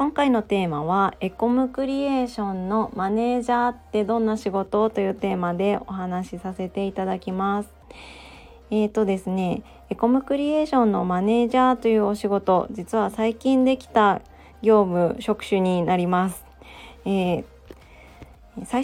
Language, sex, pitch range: Japanese, female, 180-230 Hz